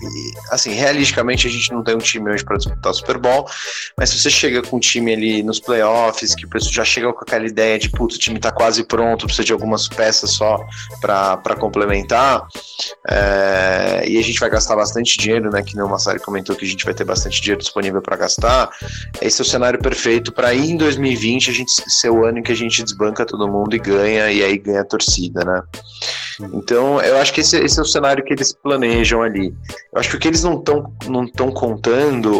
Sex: male